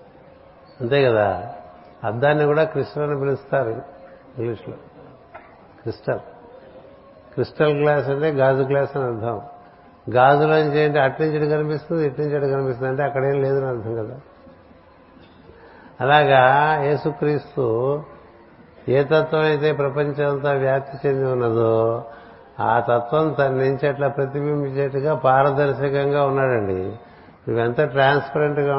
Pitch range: 130-150 Hz